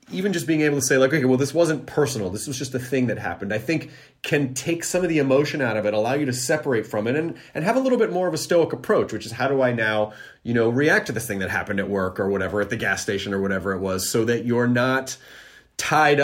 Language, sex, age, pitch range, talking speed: English, male, 30-49, 105-160 Hz, 290 wpm